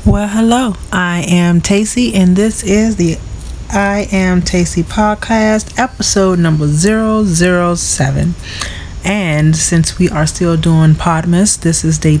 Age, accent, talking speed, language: 30-49, American, 140 wpm, English